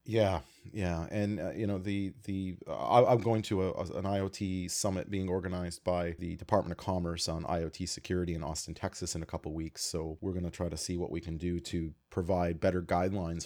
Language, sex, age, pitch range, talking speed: English, male, 30-49, 90-110 Hz, 220 wpm